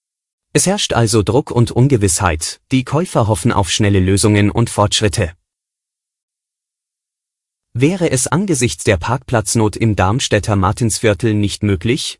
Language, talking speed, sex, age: German, 120 wpm, male, 30-49